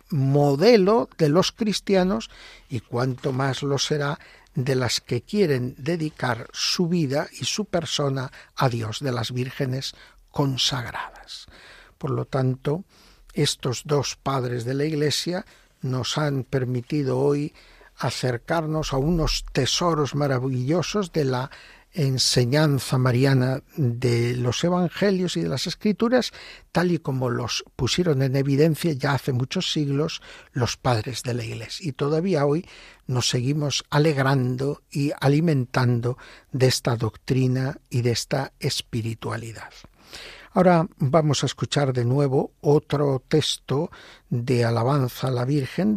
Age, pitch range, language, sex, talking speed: 60-79, 125-160 Hz, Spanish, male, 130 wpm